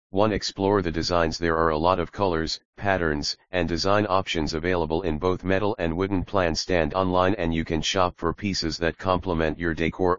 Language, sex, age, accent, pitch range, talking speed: English, male, 40-59, American, 80-95 Hz, 195 wpm